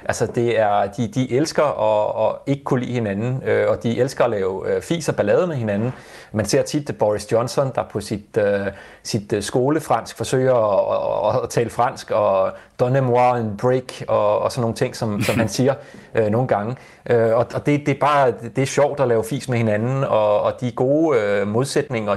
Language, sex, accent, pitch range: Danish, male, native, 110-140 Hz